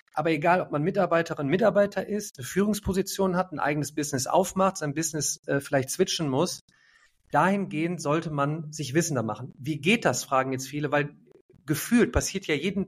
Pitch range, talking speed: 145-175 Hz, 170 wpm